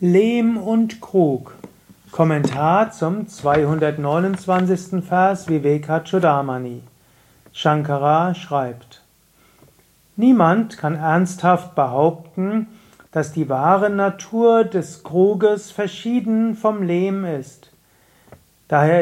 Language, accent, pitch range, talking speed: German, German, 150-195 Hz, 80 wpm